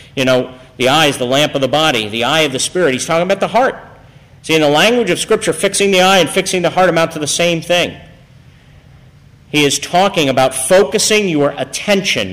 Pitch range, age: 140-215 Hz, 50-69